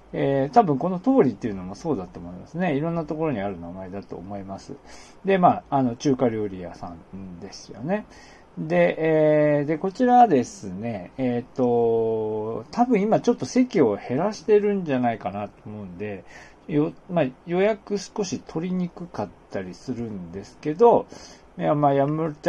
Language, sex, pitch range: Japanese, male, 115-180 Hz